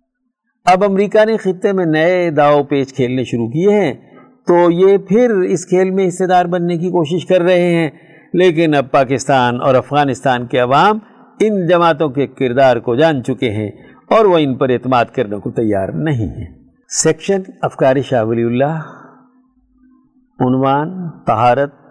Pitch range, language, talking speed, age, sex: 130-205 Hz, Urdu, 160 wpm, 50-69, male